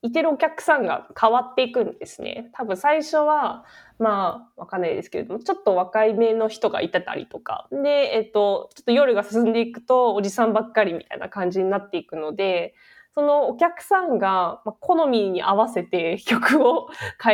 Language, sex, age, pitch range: Japanese, female, 20-39, 185-285 Hz